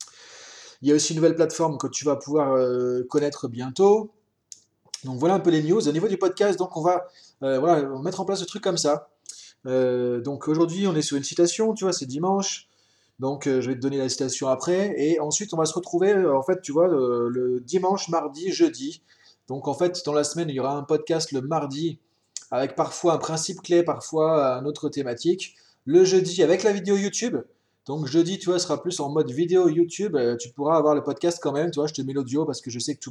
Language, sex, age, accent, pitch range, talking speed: French, male, 20-39, French, 135-180 Hz, 235 wpm